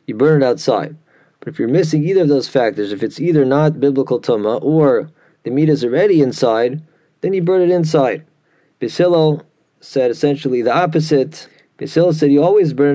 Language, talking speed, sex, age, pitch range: English, 180 wpm, male, 30-49, 135-165 Hz